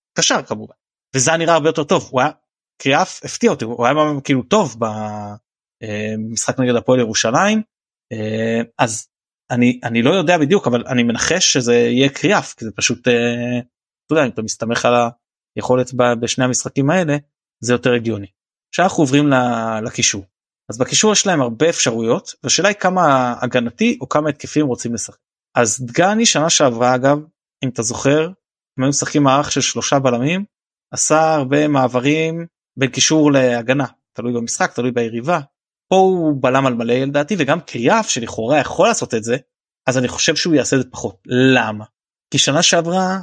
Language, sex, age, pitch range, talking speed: Hebrew, male, 20-39, 120-150 Hz, 160 wpm